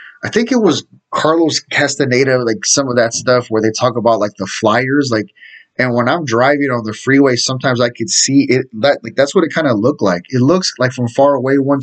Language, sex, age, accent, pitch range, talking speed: English, male, 30-49, American, 105-135 Hz, 240 wpm